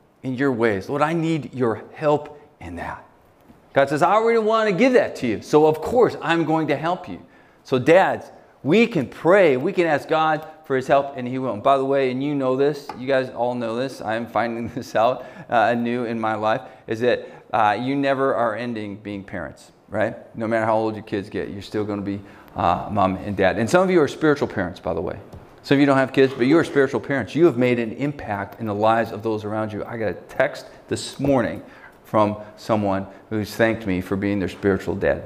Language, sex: English, male